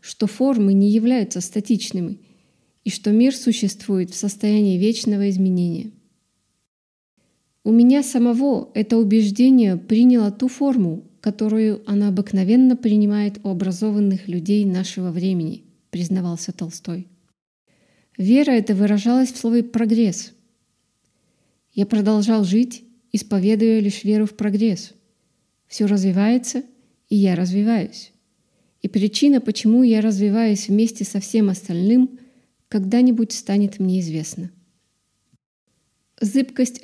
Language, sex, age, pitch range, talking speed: English, female, 20-39, 195-230 Hz, 105 wpm